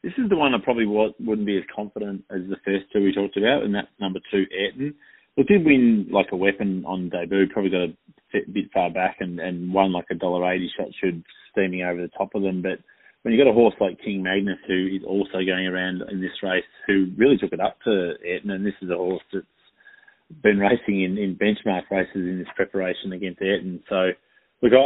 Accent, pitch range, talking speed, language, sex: Australian, 90-105 Hz, 225 wpm, English, male